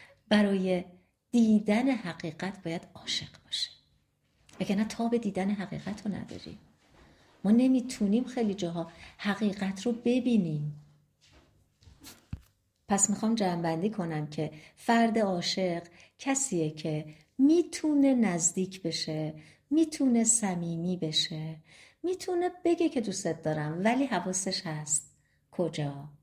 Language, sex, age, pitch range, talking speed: Persian, female, 50-69, 165-230 Hz, 105 wpm